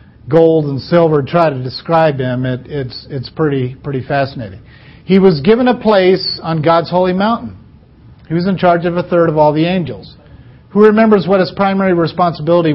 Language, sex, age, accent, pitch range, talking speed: English, male, 50-69, American, 135-175 Hz, 185 wpm